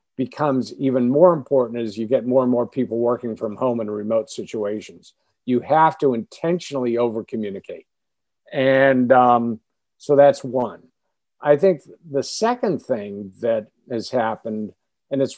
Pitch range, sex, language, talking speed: 115-150 Hz, male, English, 145 wpm